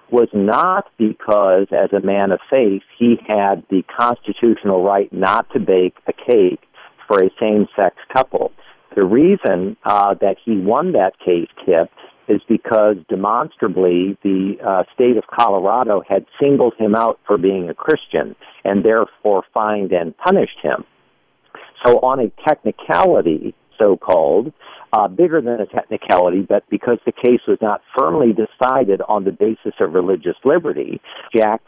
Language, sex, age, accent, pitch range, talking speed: English, male, 50-69, American, 100-120 Hz, 150 wpm